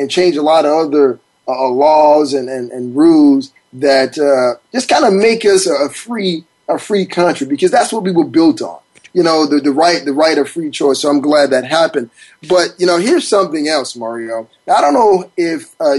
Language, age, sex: English, 20-39, male